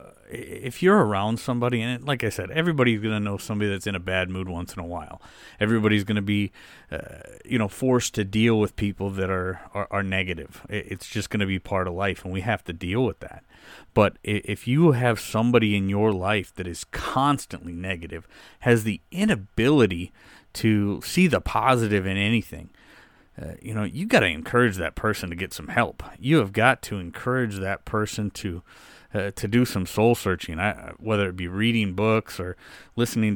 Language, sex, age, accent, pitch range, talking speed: English, male, 30-49, American, 95-115 Hz, 195 wpm